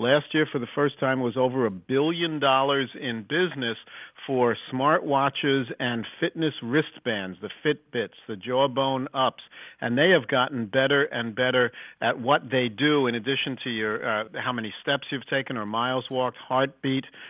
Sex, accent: male, American